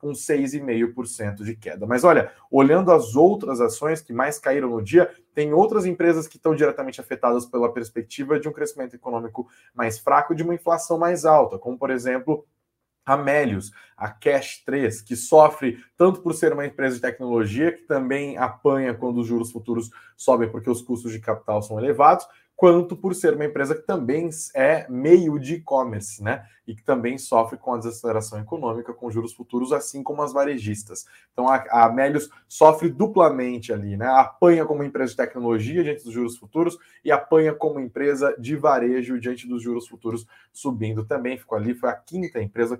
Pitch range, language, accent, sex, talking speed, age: 120-155 Hz, Portuguese, Brazilian, male, 180 wpm, 20-39